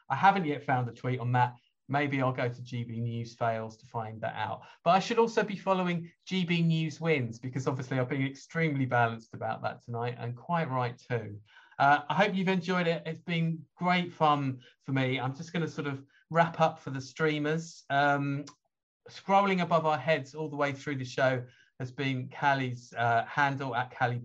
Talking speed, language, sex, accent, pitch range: 205 wpm, English, male, British, 125-155 Hz